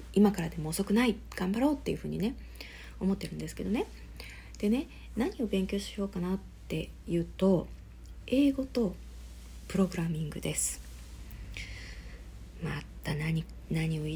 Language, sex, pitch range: Japanese, female, 160-205 Hz